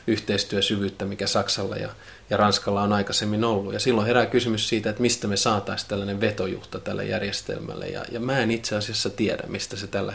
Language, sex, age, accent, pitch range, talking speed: Finnish, male, 30-49, native, 100-115 Hz, 185 wpm